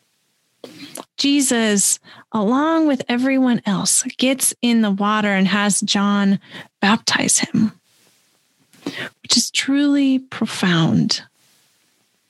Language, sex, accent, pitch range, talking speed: English, female, American, 200-255 Hz, 90 wpm